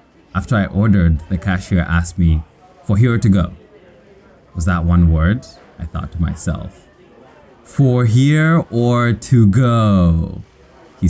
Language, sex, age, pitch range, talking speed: Italian, male, 20-39, 85-100 Hz, 140 wpm